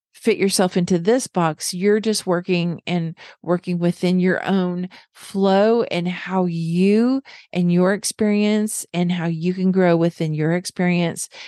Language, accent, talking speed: English, American, 145 wpm